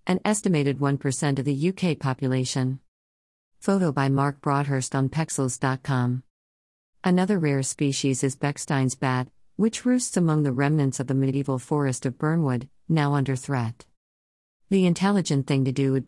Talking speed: 145 wpm